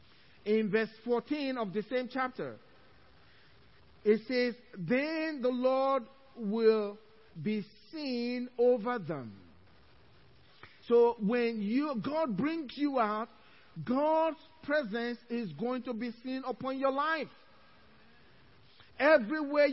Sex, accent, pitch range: male, Nigerian, 215-270 Hz